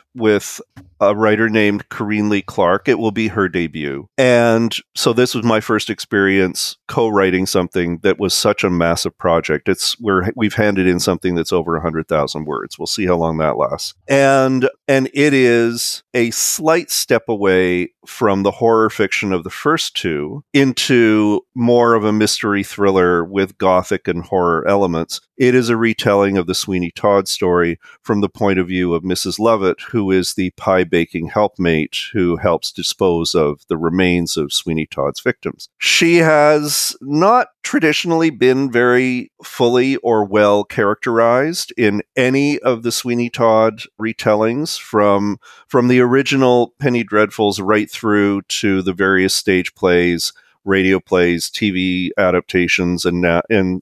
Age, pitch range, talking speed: 40-59, 90-120 Hz, 155 wpm